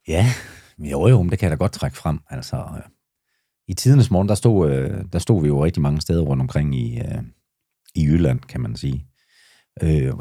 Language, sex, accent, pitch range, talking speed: Danish, male, native, 75-105 Hz, 205 wpm